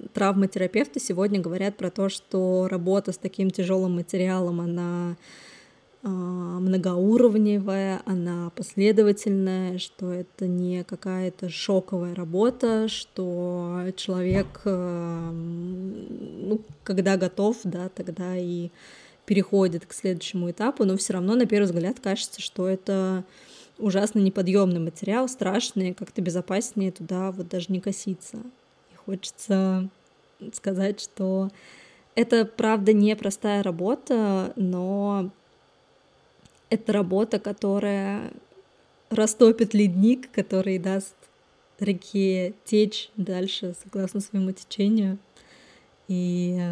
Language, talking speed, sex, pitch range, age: Russian, 100 wpm, female, 185-205 Hz, 20-39